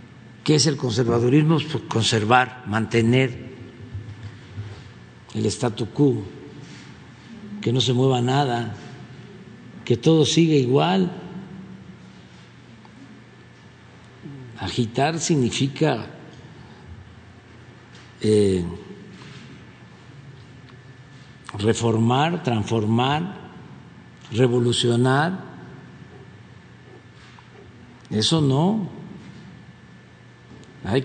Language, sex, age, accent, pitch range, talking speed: Spanish, male, 50-69, Mexican, 110-135 Hz, 50 wpm